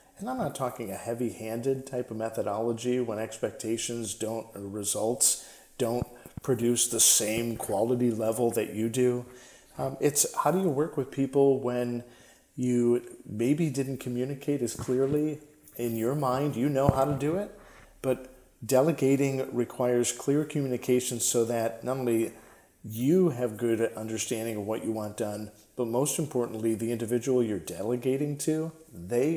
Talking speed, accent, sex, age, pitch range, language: 150 wpm, American, male, 40-59, 115-140 Hz, English